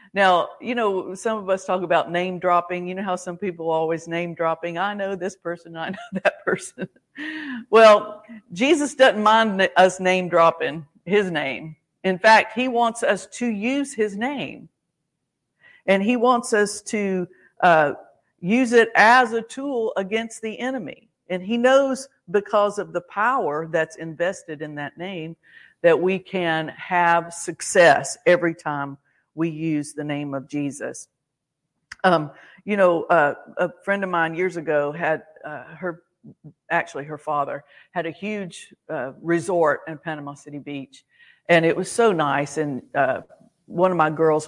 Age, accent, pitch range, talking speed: 50-69, American, 160-210 Hz, 160 wpm